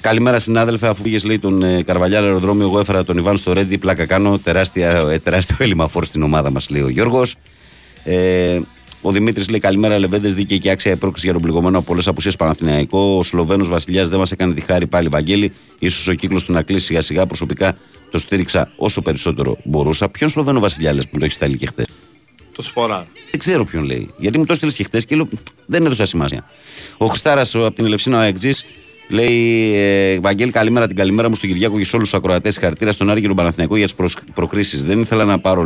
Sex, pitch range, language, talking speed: male, 85-105 Hz, Greek, 210 wpm